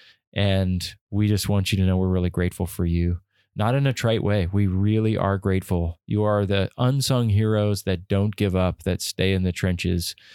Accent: American